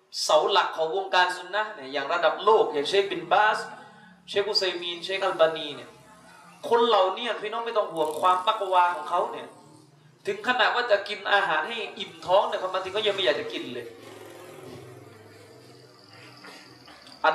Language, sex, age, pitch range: Thai, male, 20-39, 170-235 Hz